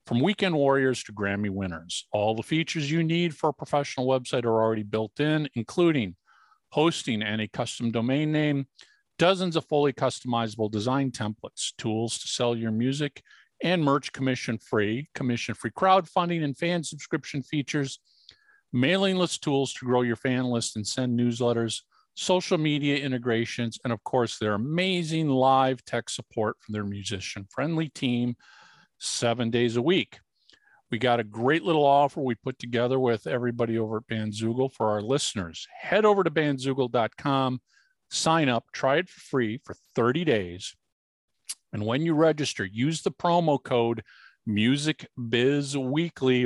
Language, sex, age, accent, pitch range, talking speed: English, male, 50-69, American, 115-150 Hz, 150 wpm